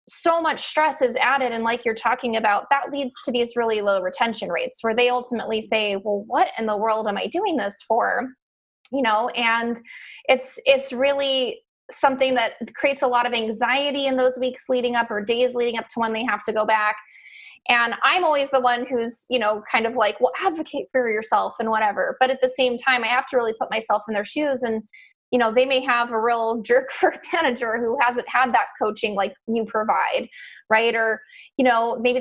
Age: 20-39